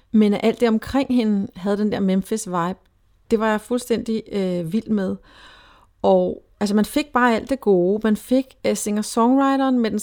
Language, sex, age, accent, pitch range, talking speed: Danish, female, 40-59, native, 195-230 Hz, 185 wpm